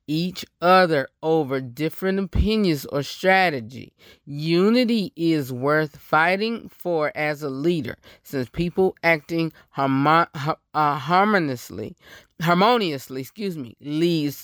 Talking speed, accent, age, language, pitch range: 85 wpm, American, 20-39, English, 145-190 Hz